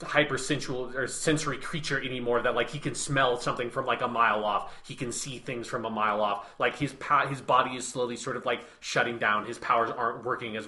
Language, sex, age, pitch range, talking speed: English, male, 30-49, 120-145 Hz, 225 wpm